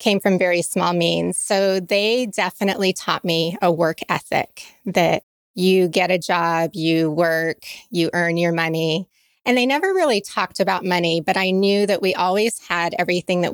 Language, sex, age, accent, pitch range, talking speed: English, female, 30-49, American, 170-195 Hz, 175 wpm